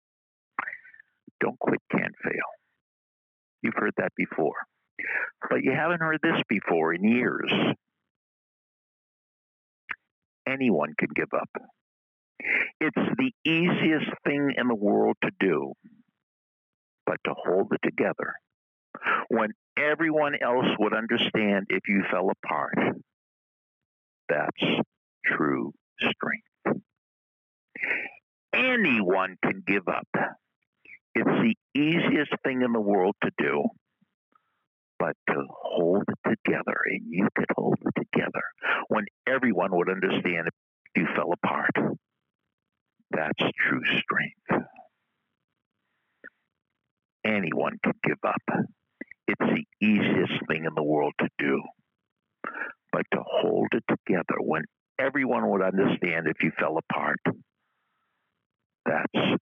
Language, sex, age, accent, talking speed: English, male, 60-79, American, 110 wpm